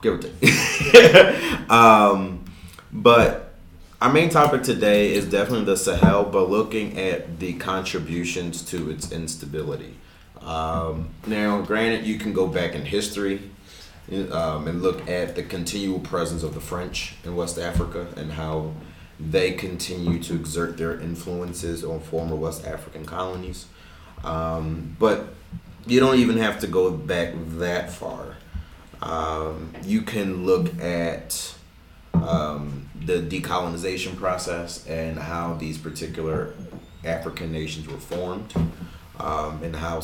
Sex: male